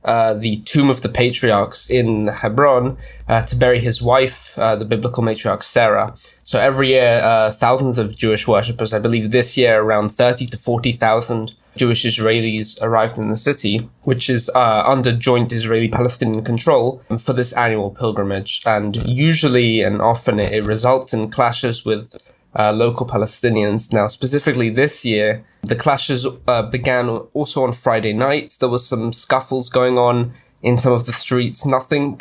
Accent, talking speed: British, 165 wpm